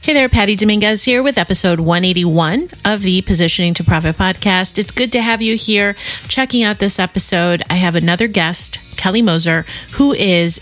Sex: female